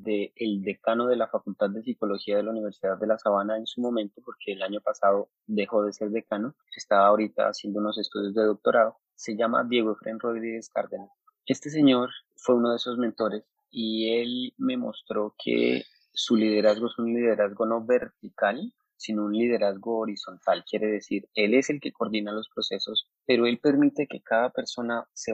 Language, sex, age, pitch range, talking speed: Spanish, male, 30-49, 105-120 Hz, 180 wpm